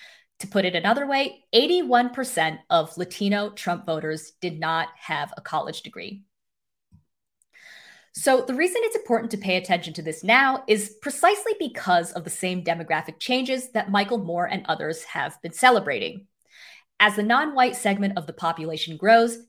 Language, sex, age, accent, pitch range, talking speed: English, female, 20-39, American, 175-255 Hz, 155 wpm